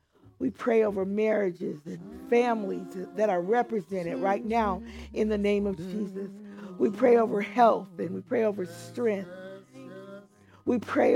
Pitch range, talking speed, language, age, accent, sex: 185-230 Hz, 145 wpm, English, 50-69, American, female